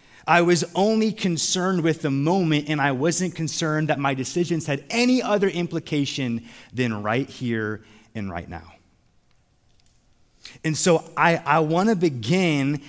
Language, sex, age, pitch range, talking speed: English, male, 30-49, 120-175 Hz, 140 wpm